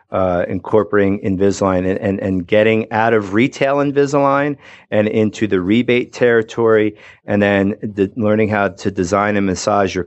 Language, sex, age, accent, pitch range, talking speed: English, male, 40-59, American, 100-115 Hz, 155 wpm